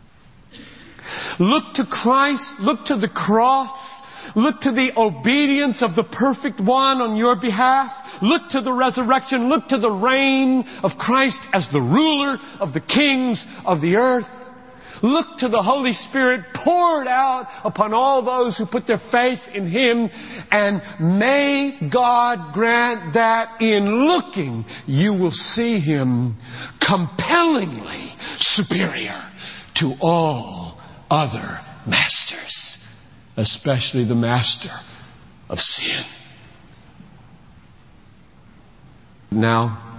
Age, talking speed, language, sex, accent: 50-69, 115 wpm, English, male, American